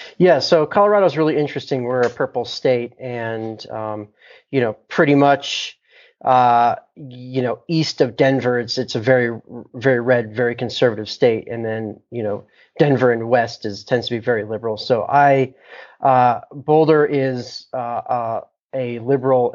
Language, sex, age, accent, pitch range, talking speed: English, male, 30-49, American, 120-140 Hz, 165 wpm